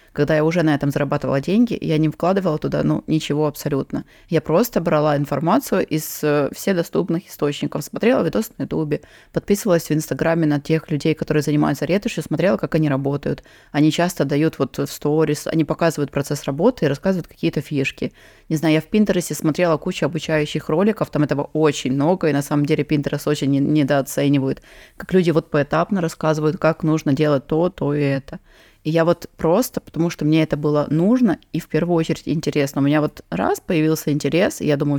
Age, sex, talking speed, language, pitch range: 20-39, female, 185 wpm, Russian, 145-170 Hz